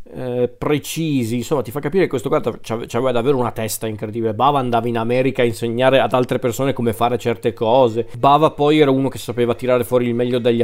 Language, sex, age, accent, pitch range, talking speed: Italian, male, 40-59, native, 115-130 Hz, 220 wpm